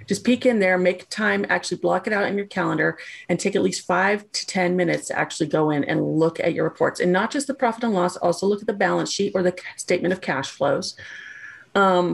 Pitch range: 175-210 Hz